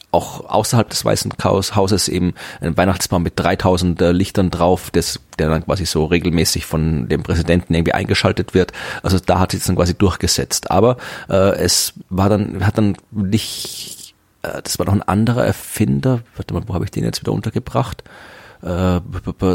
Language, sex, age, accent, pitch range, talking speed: German, male, 30-49, German, 90-110 Hz, 175 wpm